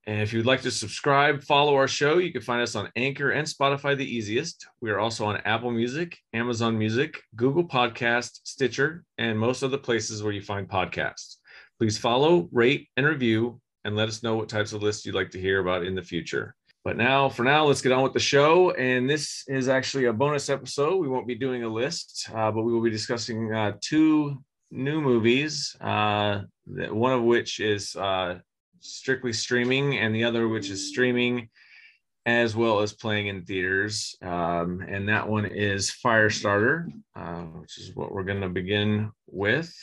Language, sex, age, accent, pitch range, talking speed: English, male, 30-49, American, 105-130 Hz, 195 wpm